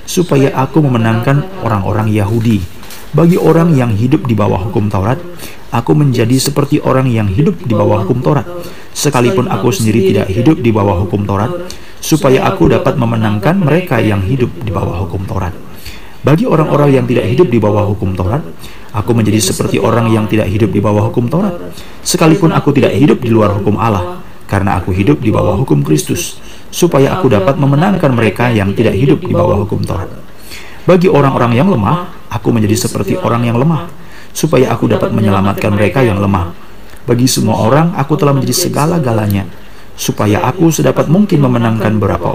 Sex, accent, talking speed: male, native, 170 wpm